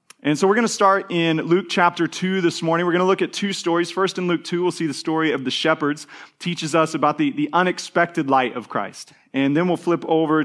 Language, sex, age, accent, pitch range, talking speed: English, male, 30-49, American, 140-175 Hz, 255 wpm